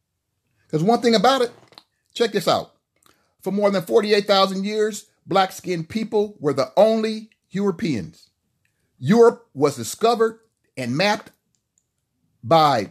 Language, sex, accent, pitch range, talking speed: English, male, American, 135-205 Hz, 110 wpm